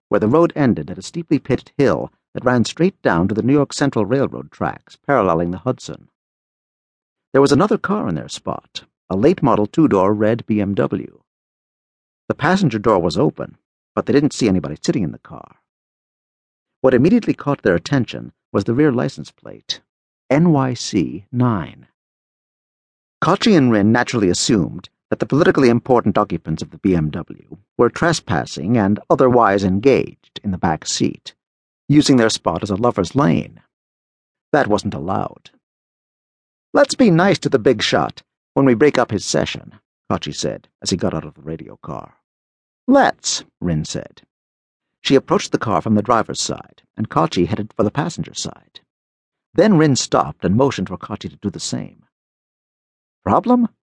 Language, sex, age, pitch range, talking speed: English, male, 50-69, 95-140 Hz, 160 wpm